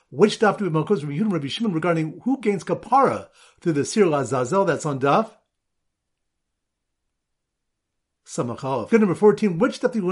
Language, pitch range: English, 135-200 Hz